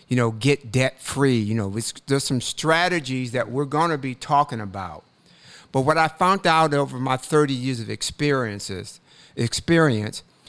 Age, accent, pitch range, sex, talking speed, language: 50-69, American, 120-155 Hz, male, 165 wpm, English